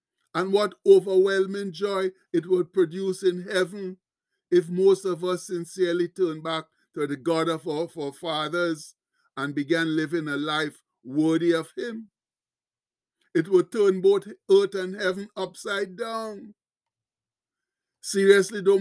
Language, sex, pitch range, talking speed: English, male, 175-200 Hz, 135 wpm